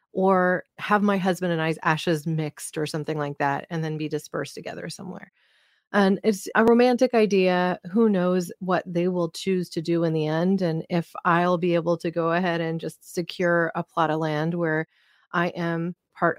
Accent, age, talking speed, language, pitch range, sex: American, 30-49, 195 wpm, English, 165-195 Hz, female